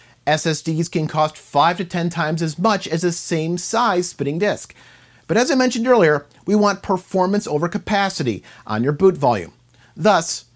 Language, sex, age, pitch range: English, male, 40-59, 140-190 Hz